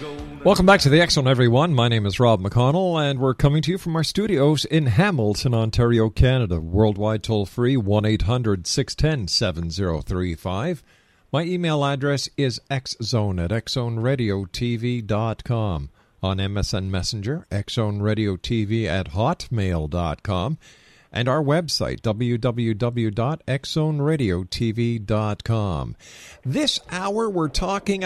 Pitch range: 105-150 Hz